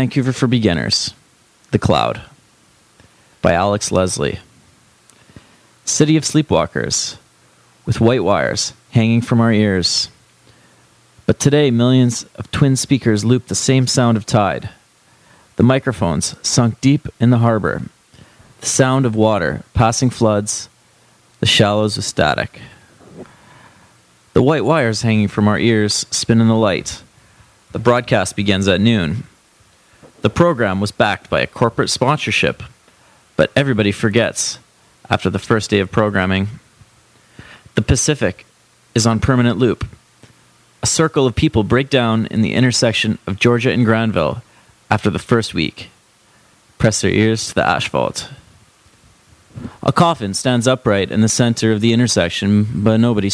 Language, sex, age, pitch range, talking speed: English, male, 30-49, 105-125 Hz, 135 wpm